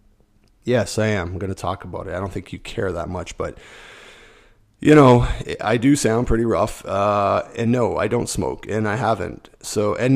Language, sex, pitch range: English, male, 105-130 Hz